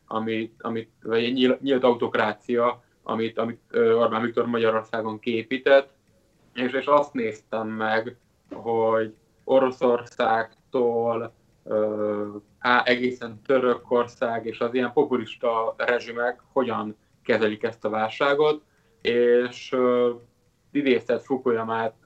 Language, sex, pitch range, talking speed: Hungarian, male, 115-125 Hz, 90 wpm